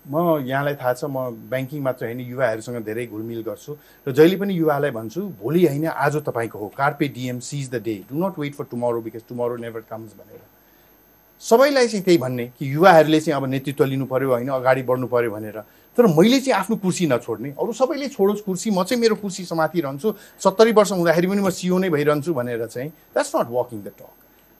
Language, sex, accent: English, male, Indian